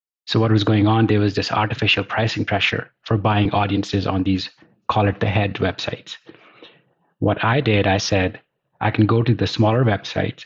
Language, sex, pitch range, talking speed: English, male, 95-110 Hz, 190 wpm